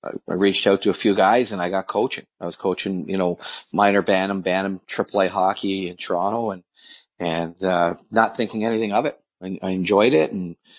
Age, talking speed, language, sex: 40-59, 200 wpm, English, male